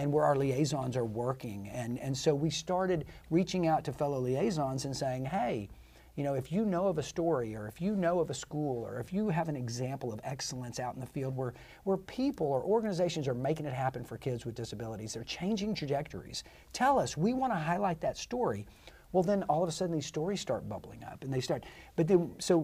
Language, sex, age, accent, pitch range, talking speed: English, male, 50-69, American, 125-160 Hz, 230 wpm